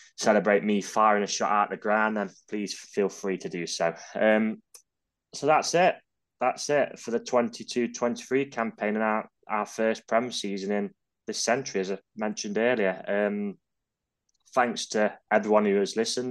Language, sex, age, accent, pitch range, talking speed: English, male, 20-39, British, 100-120 Hz, 175 wpm